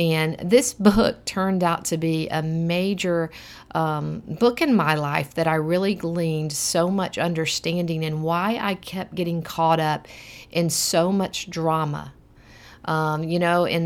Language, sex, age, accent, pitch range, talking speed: English, female, 50-69, American, 160-205 Hz, 155 wpm